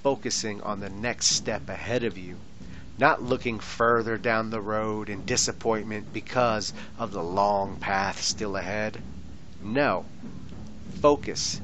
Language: English